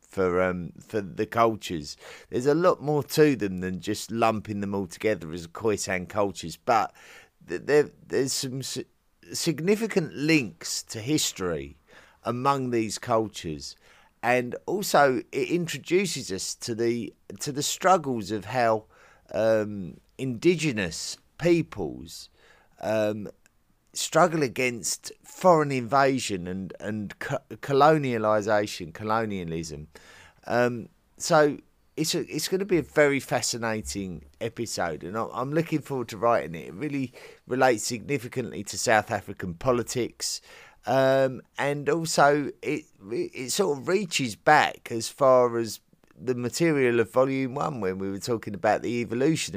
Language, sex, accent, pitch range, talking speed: English, male, British, 100-145 Hz, 130 wpm